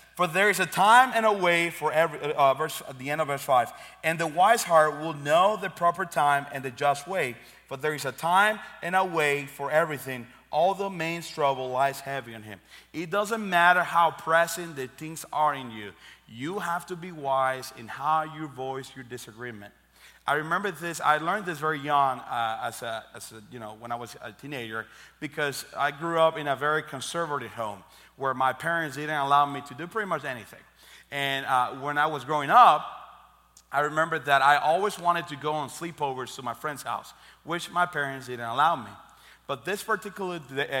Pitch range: 130-170 Hz